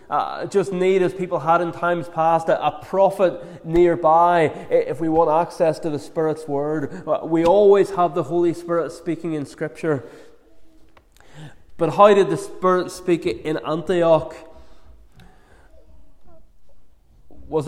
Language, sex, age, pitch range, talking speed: English, male, 20-39, 145-175 Hz, 130 wpm